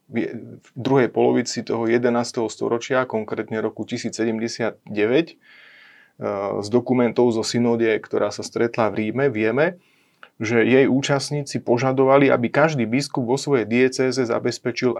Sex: male